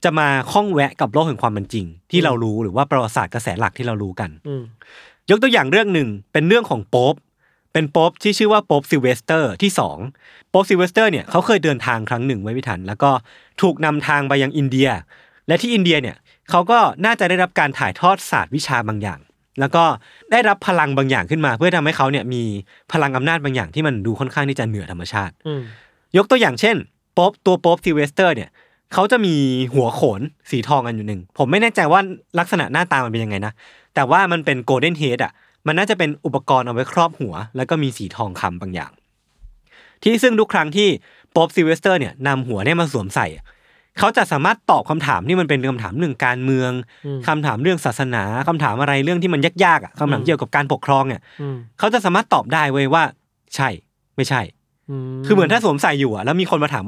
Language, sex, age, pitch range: Thai, male, 20-39, 125-170 Hz